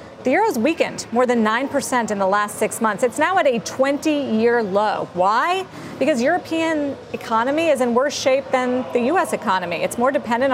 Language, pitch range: English, 215-265 Hz